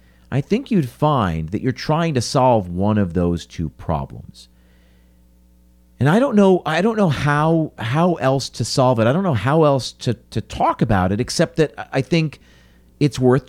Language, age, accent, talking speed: English, 40-59, American, 190 wpm